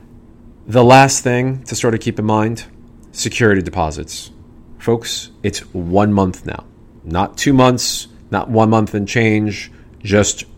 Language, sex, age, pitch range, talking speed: English, male, 30-49, 90-115 Hz, 140 wpm